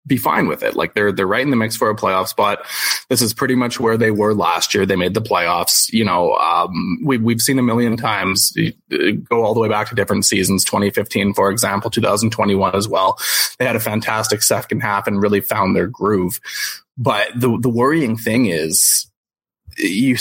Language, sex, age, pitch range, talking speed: English, male, 20-39, 105-125 Hz, 220 wpm